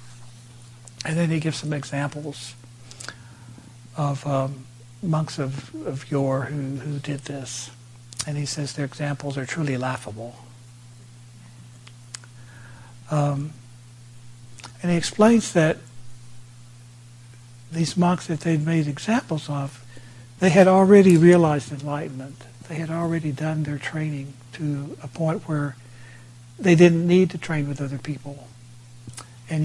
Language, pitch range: English, 120-155 Hz